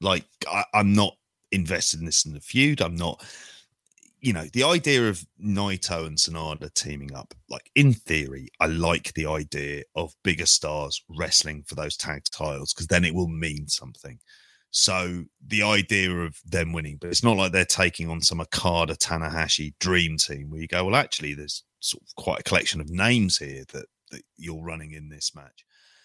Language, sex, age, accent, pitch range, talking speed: English, male, 30-49, British, 80-100 Hz, 190 wpm